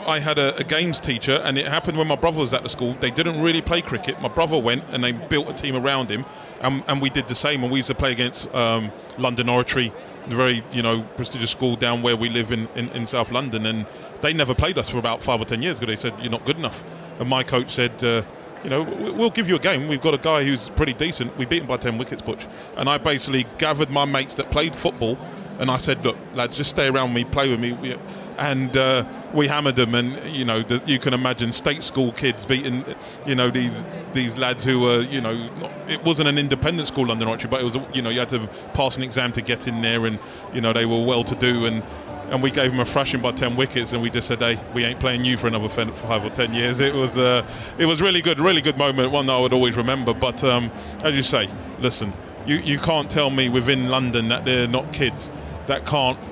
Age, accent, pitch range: 20-39, British, 120-140 Hz